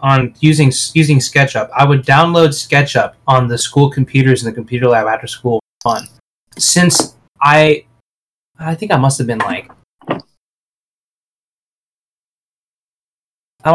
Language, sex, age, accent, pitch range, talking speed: English, male, 20-39, American, 125-145 Hz, 125 wpm